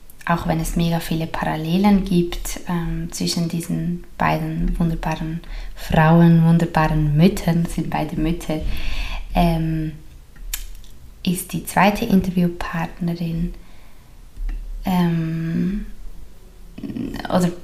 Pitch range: 160-175 Hz